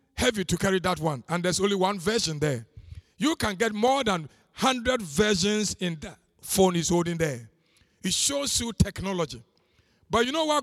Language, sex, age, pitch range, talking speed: English, male, 50-69, 190-260 Hz, 180 wpm